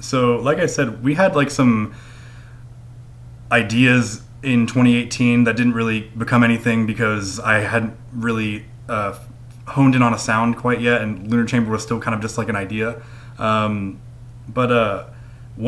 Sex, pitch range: male, 110-120 Hz